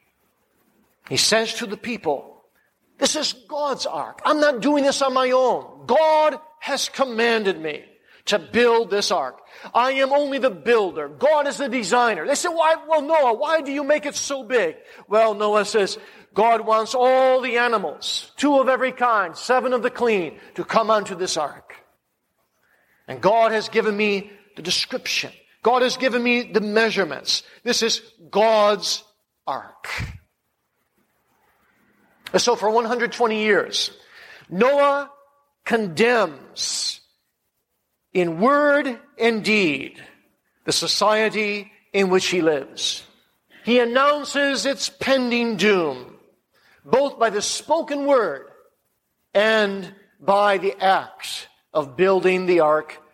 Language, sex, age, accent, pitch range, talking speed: English, male, 50-69, American, 205-270 Hz, 135 wpm